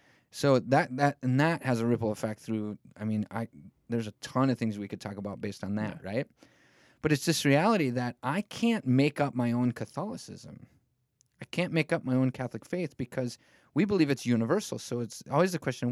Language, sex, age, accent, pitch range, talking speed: English, male, 30-49, American, 120-150 Hz, 205 wpm